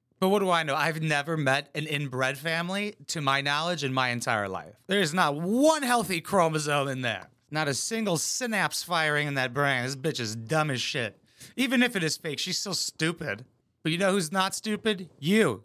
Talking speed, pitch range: 210 wpm, 120-170 Hz